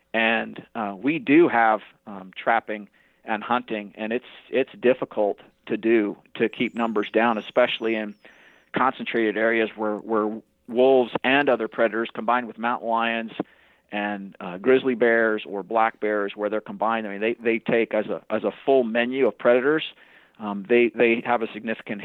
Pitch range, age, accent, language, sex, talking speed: 110-125 Hz, 40-59, American, English, male, 170 wpm